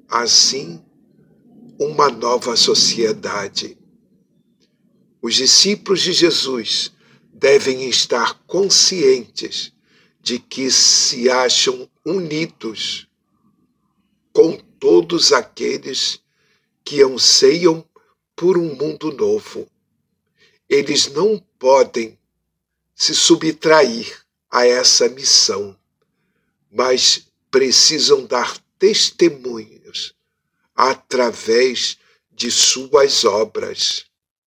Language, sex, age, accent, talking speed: Portuguese, male, 60-79, Brazilian, 70 wpm